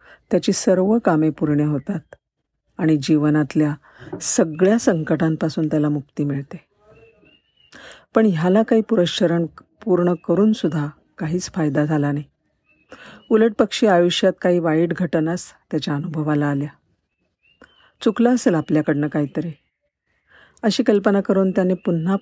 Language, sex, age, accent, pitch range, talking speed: Marathi, female, 50-69, native, 155-195 Hz, 105 wpm